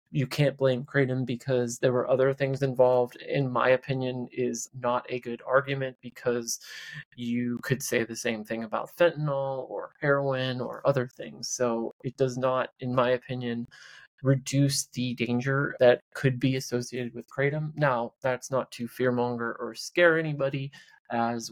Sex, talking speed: male, 160 wpm